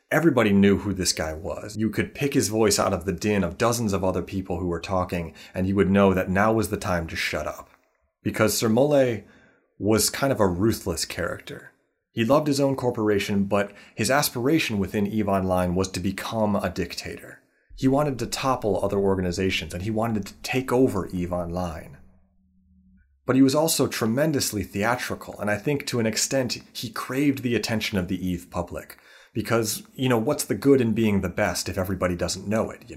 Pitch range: 95-125 Hz